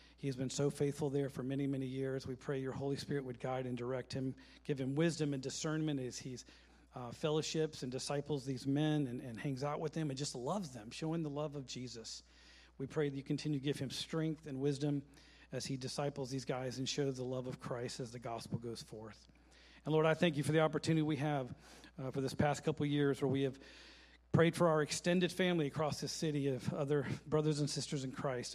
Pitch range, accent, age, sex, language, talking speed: 135-155 Hz, American, 40-59, male, English, 230 wpm